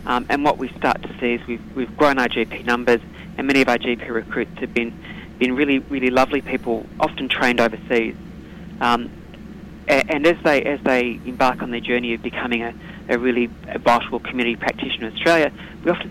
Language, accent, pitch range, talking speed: English, Australian, 120-130 Hz, 195 wpm